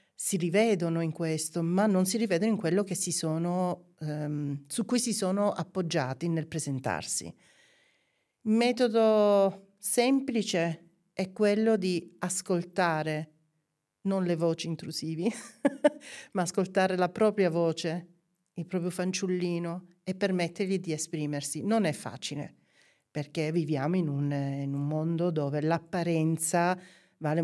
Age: 40-59